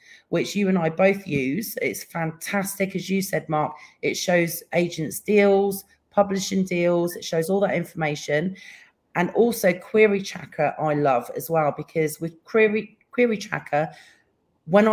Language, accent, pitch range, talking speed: English, British, 160-215 Hz, 150 wpm